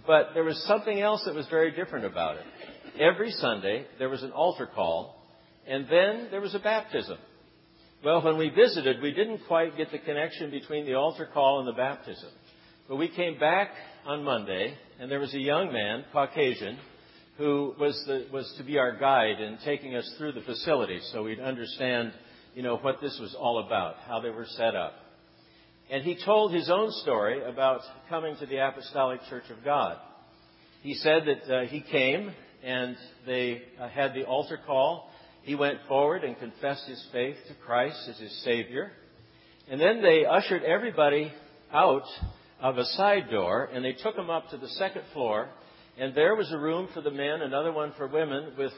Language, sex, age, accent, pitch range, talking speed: English, male, 60-79, American, 130-160 Hz, 190 wpm